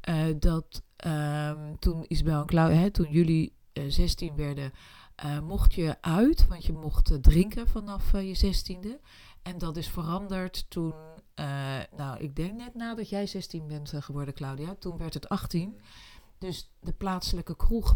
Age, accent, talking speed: 40-59, Dutch, 165 wpm